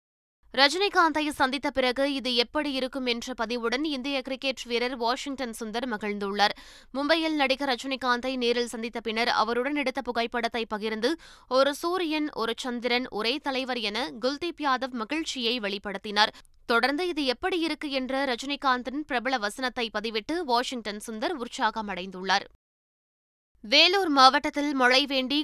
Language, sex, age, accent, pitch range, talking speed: Tamil, female, 20-39, native, 235-280 Hz, 120 wpm